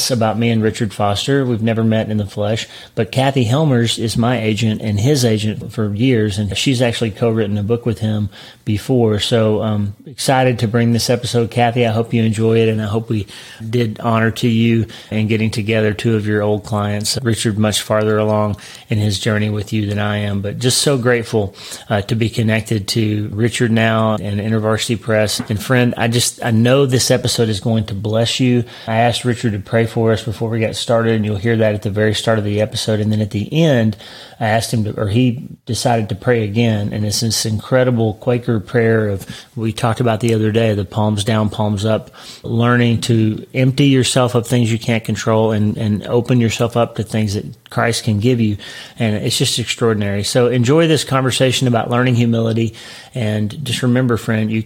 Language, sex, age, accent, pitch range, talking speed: English, male, 30-49, American, 110-120 Hz, 210 wpm